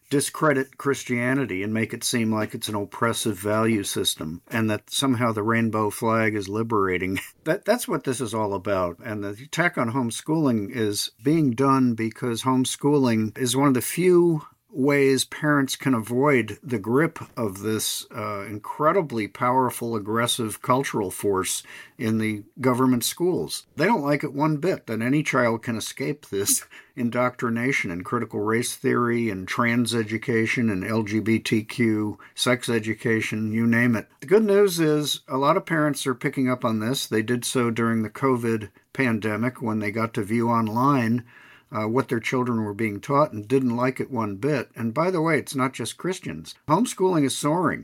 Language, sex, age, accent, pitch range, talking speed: English, male, 50-69, American, 110-135 Hz, 170 wpm